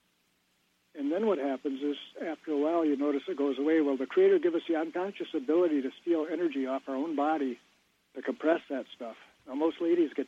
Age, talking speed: 60-79, 210 wpm